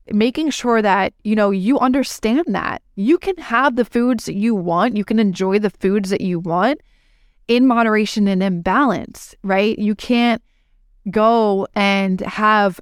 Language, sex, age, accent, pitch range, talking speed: English, female, 20-39, American, 190-225 Hz, 165 wpm